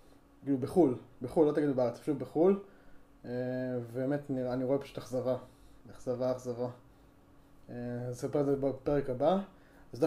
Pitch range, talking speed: 125-150 Hz, 155 wpm